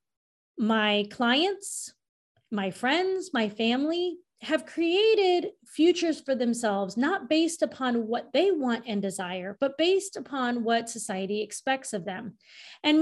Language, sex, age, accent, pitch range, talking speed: English, female, 30-49, American, 215-285 Hz, 130 wpm